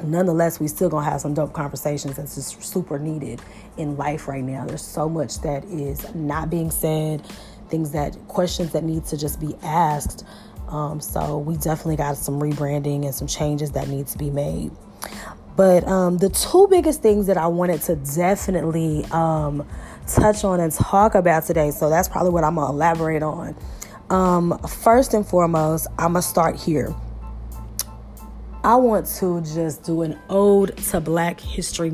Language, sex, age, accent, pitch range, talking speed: English, female, 20-39, American, 150-180 Hz, 175 wpm